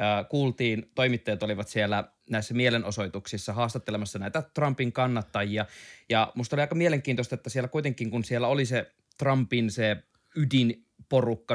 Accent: native